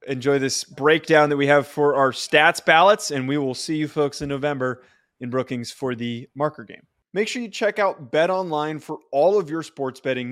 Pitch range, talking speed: 135-165 Hz, 215 wpm